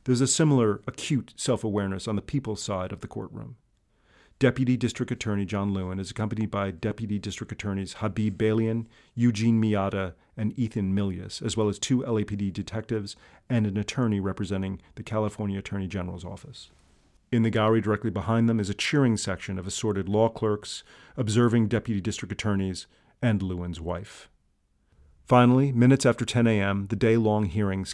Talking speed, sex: 160 wpm, male